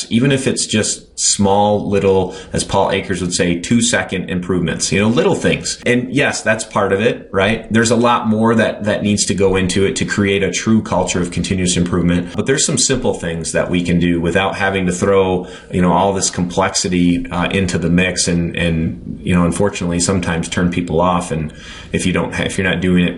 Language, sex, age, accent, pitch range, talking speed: English, male, 30-49, American, 90-105 Hz, 210 wpm